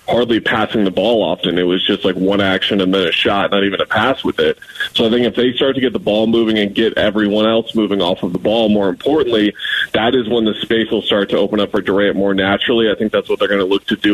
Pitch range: 100-115 Hz